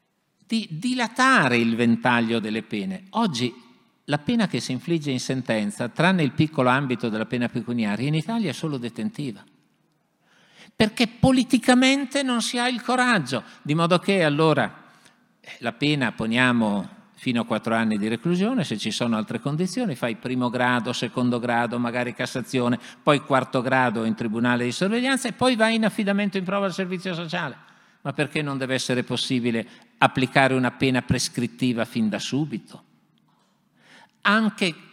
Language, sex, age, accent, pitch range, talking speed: Italian, male, 50-69, native, 120-195 Hz, 155 wpm